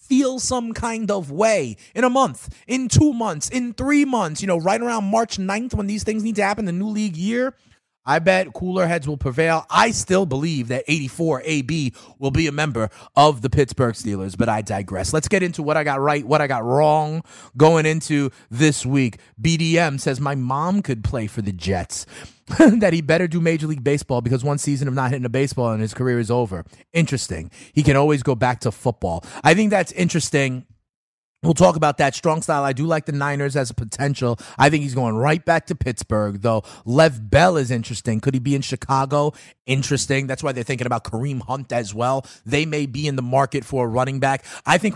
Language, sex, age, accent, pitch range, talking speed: English, male, 30-49, American, 125-170 Hz, 215 wpm